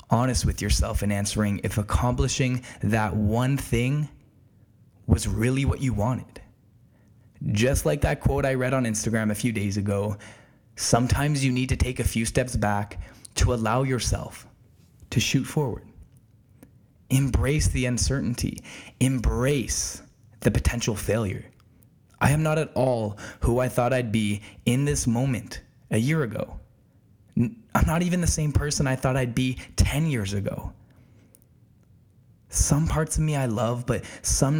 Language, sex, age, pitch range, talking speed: English, male, 20-39, 105-130 Hz, 150 wpm